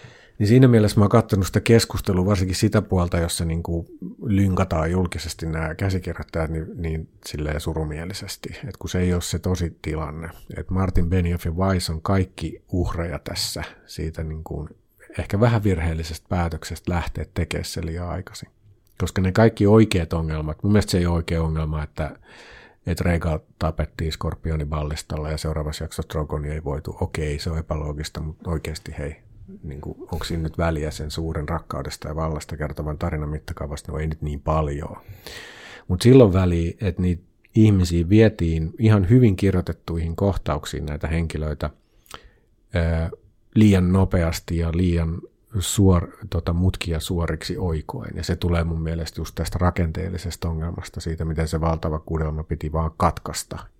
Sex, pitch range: male, 80-95 Hz